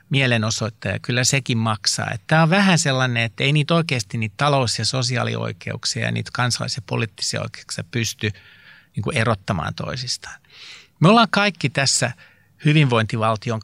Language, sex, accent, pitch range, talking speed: Finnish, male, native, 115-145 Hz, 130 wpm